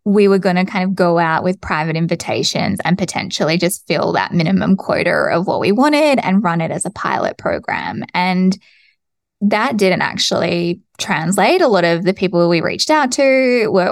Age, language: 20-39, English